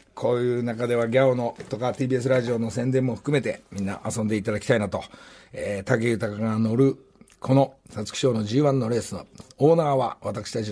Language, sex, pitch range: Japanese, male, 105-130 Hz